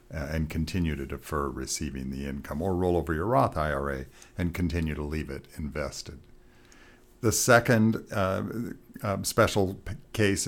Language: English